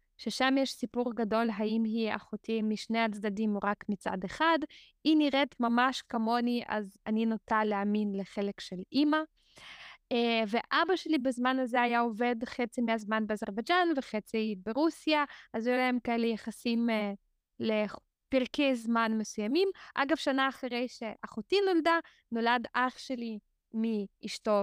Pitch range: 220-270 Hz